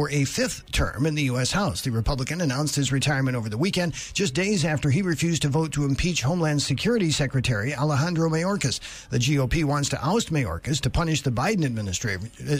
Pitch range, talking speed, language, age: 135-165 Hz, 195 wpm, English, 50-69